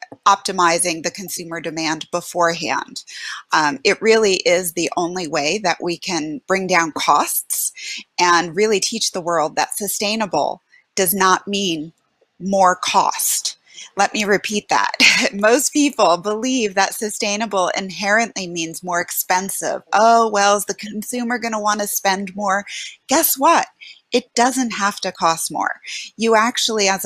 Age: 30-49